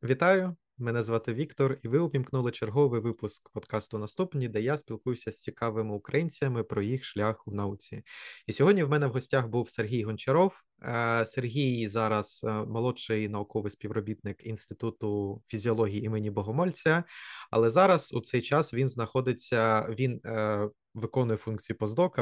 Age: 20-39